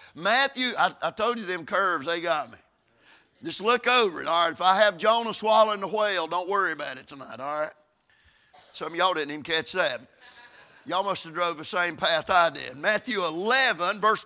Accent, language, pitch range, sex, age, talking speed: American, English, 210-280 Hz, male, 50-69, 205 wpm